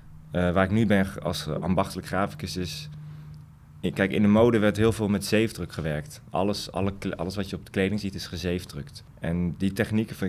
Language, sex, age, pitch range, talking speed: Dutch, male, 20-39, 85-105 Hz, 210 wpm